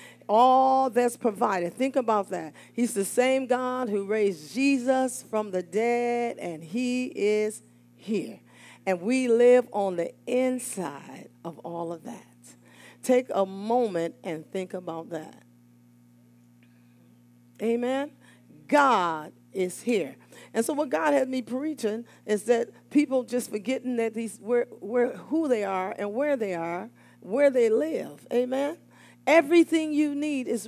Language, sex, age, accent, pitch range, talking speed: English, female, 40-59, American, 170-265 Hz, 140 wpm